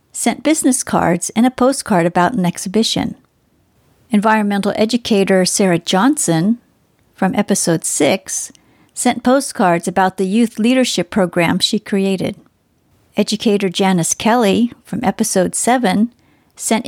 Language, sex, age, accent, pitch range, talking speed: English, female, 50-69, American, 190-230 Hz, 115 wpm